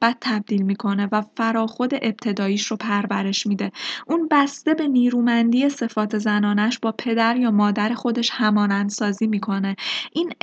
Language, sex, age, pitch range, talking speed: Persian, female, 20-39, 205-255 Hz, 130 wpm